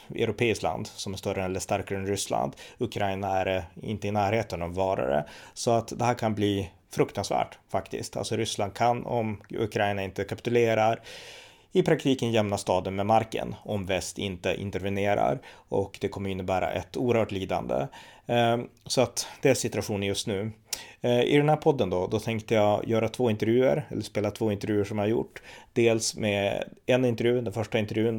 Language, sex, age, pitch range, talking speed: Swedish, male, 30-49, 100-115 Hz, 170 wpm